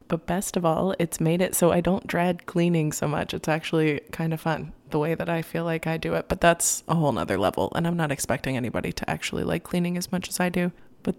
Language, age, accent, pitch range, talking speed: English, 20-39, American, 155-175 Hz, 265 wpm